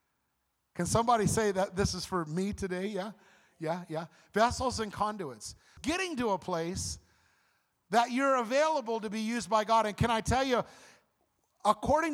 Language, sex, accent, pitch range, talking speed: English, male, American, 150-220 Hz, 165 wpm